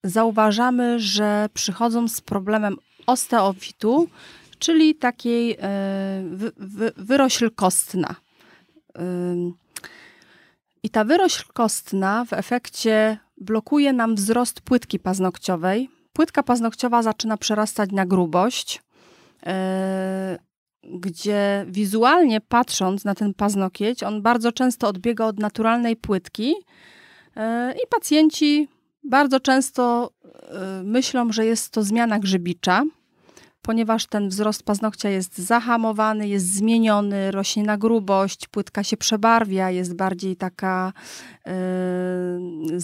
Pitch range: 195-240 Hz